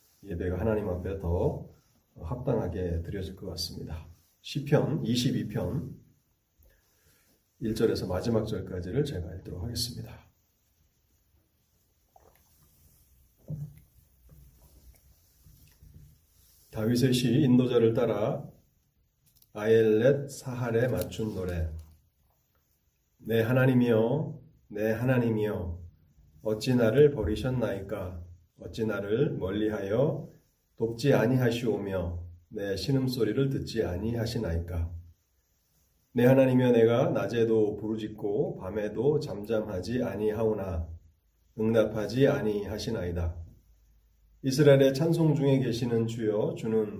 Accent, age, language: native, 40-59, Korean